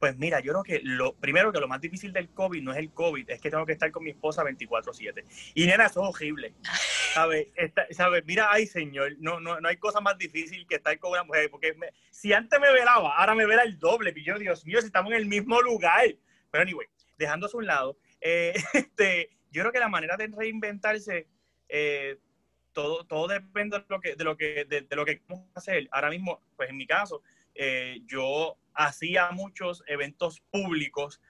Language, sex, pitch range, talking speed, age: Spanish, male, 150-200 Hz, 205 wpm, 30-49